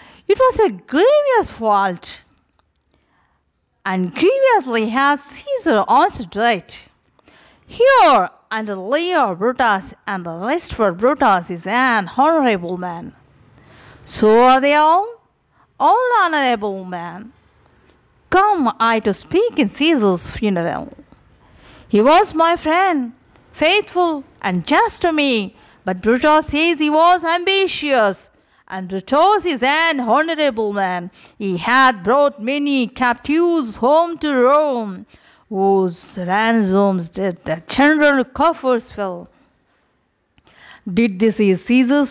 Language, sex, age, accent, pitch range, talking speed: Telugu, female, 50-69, native, 200-320 Hz, 115 wpm